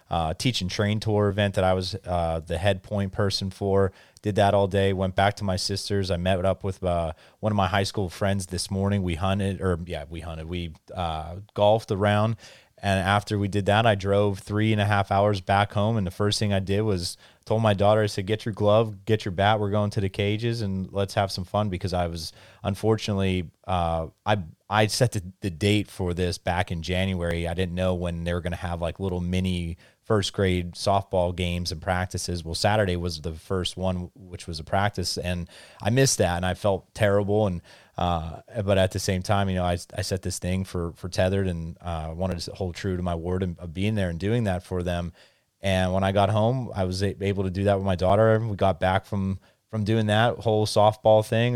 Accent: American